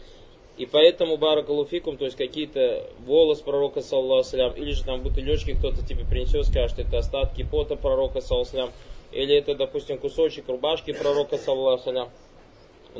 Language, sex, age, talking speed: Russian, male, 20-39, 145 wpm